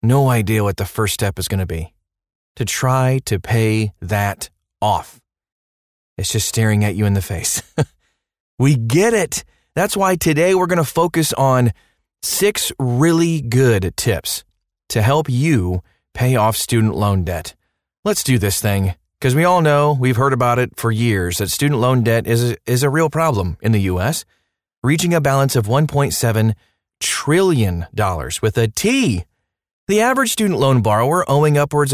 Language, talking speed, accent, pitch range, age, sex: English, 165 wpm, American, 100-145 Hz, 30-49, male